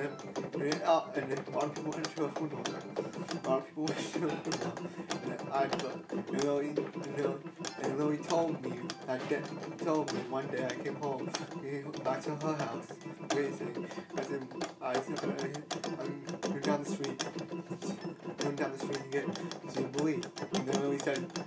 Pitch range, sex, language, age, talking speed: 170-200 Hz, male, English, 20-39, 145 wpm